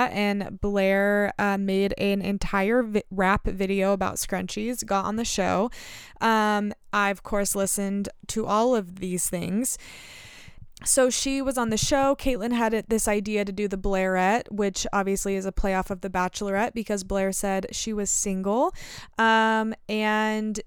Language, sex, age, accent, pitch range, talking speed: English, female, 20-39, American, 195-230 Hz, 155 wpm